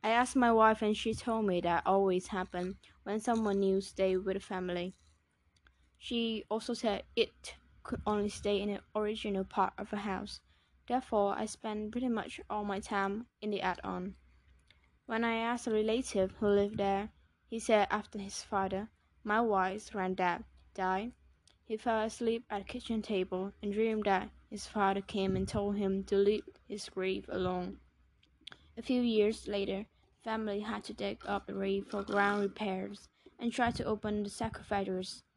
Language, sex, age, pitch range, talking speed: Vietnamese, female, 10-29, 195-220 Hz, 170 wpm